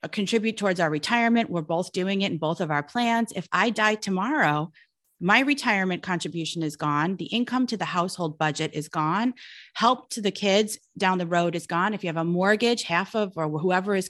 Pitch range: 170-220 Hz